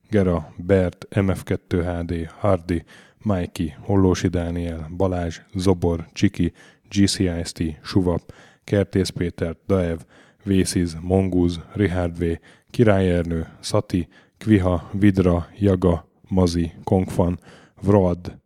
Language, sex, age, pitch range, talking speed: Hungarian, male, 10-29, 85-100 Hz, 90 wpm